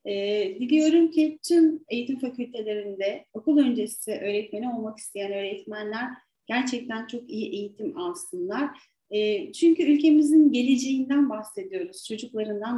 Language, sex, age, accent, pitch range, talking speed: Turkish, female, 40-59, native, 220-300 Hz, 110 wpm